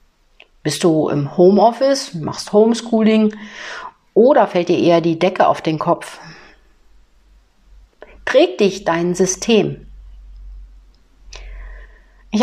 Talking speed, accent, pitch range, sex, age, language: 95 wpm, German, 165-210 Hz, female, 50-69, German